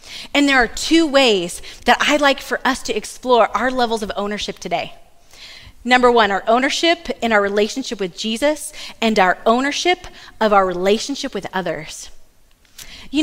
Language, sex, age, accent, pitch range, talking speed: English, female, 30-49, American, 205-295 Hz, 160 wpm